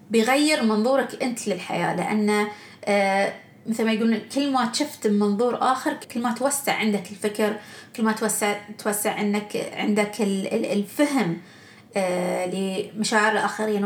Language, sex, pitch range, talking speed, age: Arabic, female, 205-265 Hz, 115 wpm, 20-39